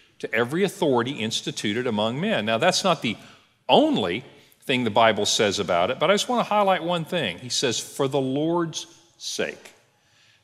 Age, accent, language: 50-69, American, English